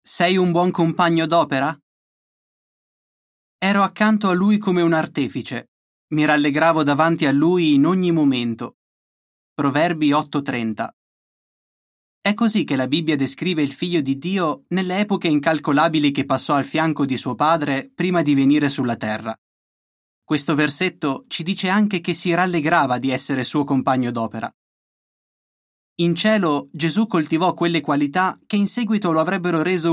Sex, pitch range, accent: male, 140-180 Hz, native